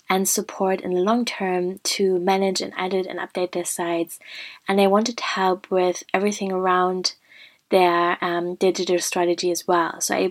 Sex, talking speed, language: female, 175 wpm, English